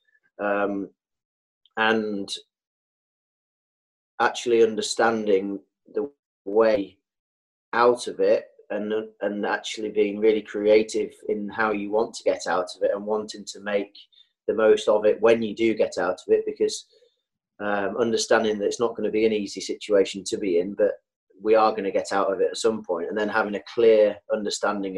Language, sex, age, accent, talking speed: English, male, 30-49, British, 175 wpm